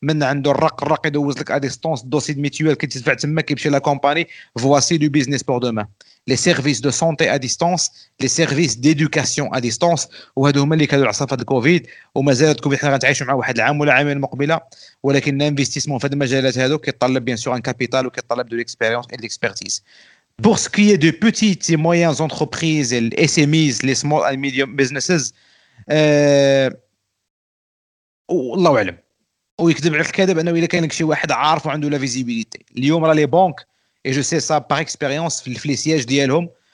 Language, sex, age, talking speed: Arabic, male, 40-59, 180 wpm